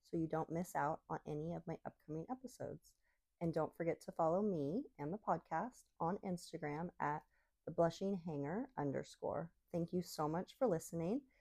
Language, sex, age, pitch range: English, female, 30-49, 150-185 Hz